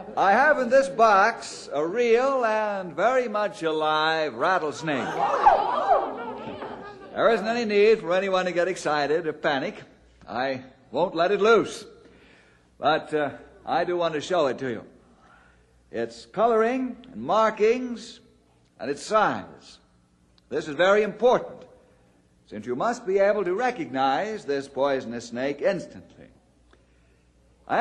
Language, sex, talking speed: English, male, 130 wpm